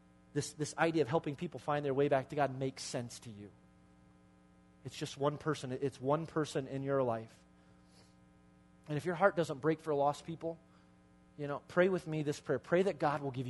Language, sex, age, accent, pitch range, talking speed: English, male, 30-49, American, 115-155 Hz, 210 wpm